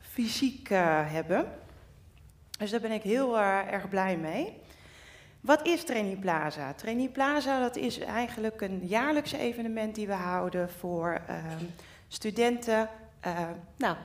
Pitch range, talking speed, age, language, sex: 180-220 Hz, 135 wpm, 30-49, Dutch, female